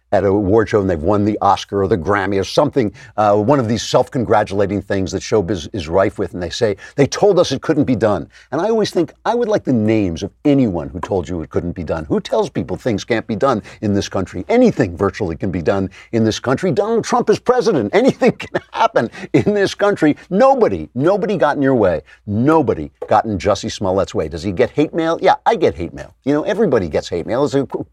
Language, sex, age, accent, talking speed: English, male, 50-69, American, 240 wpm